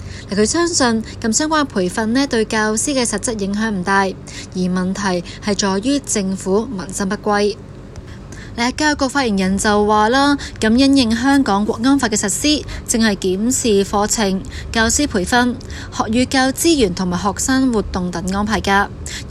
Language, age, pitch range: Chinese, 20-39, 195-255 Hz